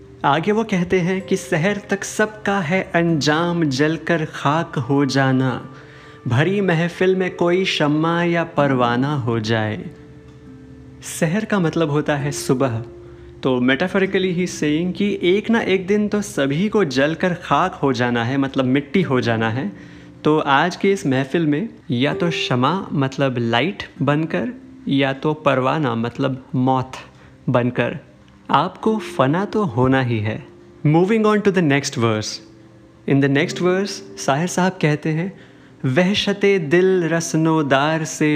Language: Hindi